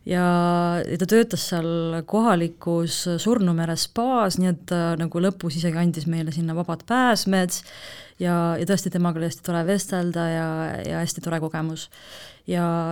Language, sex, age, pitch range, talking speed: English, female, 20-39, 165-190 Hz, 140 wpm